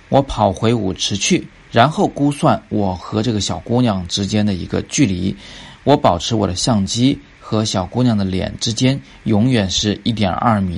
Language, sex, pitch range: Chinese, male, 95-110 Hz